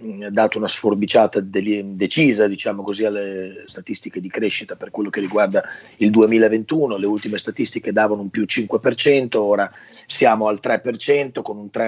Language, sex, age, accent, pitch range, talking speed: Italian, male, 30-49, native, 110-130 Hz, 155 wpm